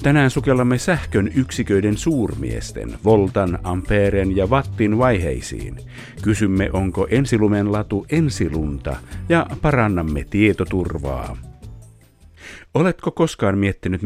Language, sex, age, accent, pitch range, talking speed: Finnish, male, 50-69, native, 90-120 Hz, 90 wpm